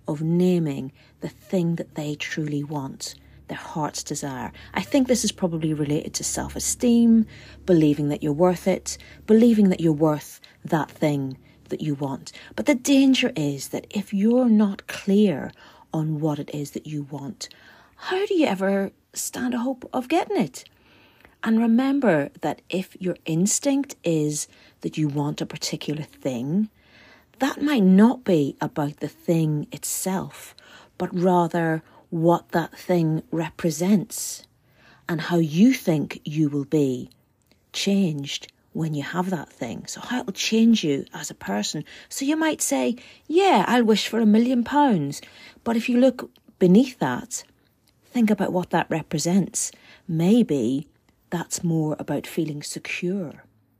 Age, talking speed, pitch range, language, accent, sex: 40-59, 150 wpm, 150-225 Hz, English, British, female